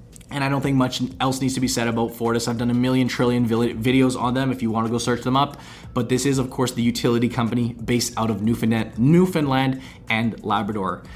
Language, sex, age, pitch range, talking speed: English, male, 20-39, 120-140 Hz, 220 wpm